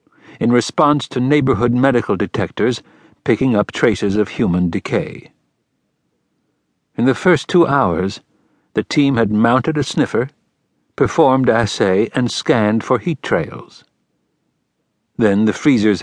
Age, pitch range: 60-79, 95-135 Hz